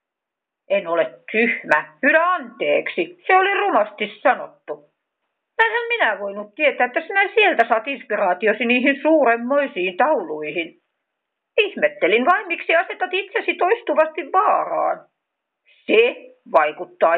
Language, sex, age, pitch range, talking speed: Finnish, female, 50-69, 205-345 Hz, 105 wpm